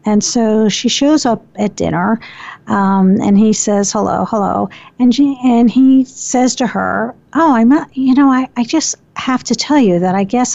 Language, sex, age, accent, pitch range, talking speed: English, female, 50-69, American, 200-255 Hz, 200 wpm